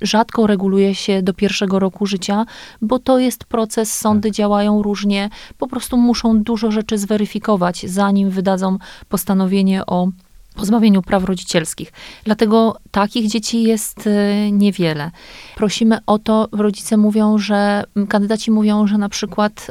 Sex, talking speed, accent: female, 130 wpm, native